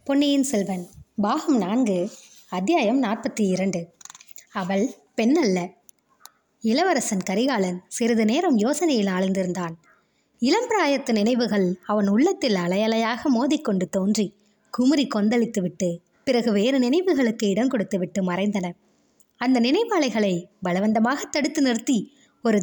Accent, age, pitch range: native, 20-39, 195-265 Hz